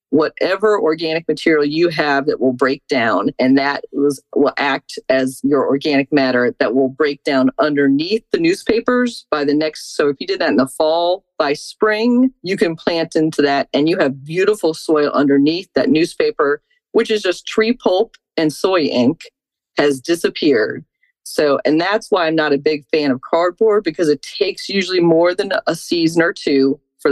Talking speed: 180 wpm